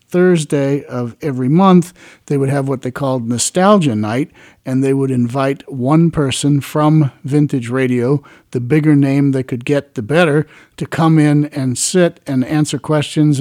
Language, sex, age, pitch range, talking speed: English, male, 50-69, 125-155 Hz, 165 wpm